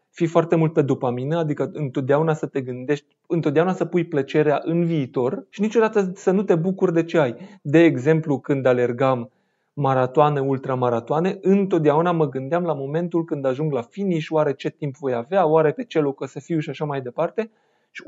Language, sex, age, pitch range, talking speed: Romanian, male, 30-49, 145-195 Hz, 185 wpm